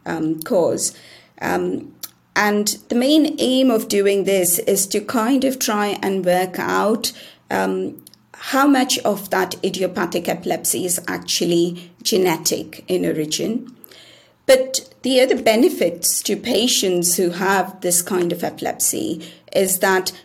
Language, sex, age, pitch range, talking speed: English, female, 30-49, 175-235 Hz, 125 wpm